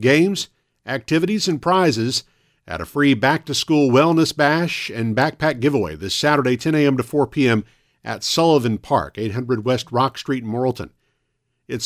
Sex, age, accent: male, 50-69, American